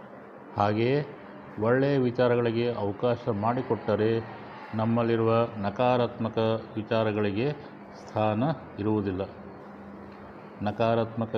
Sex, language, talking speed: male, Kannada, 60 wpm